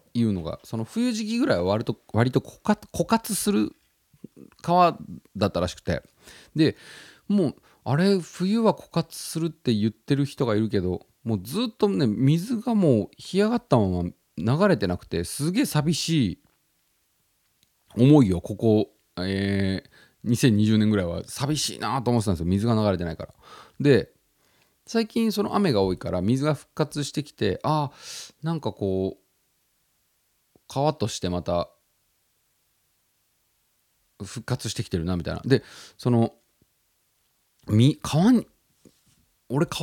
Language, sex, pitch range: Japanese, male, 100-170 Hz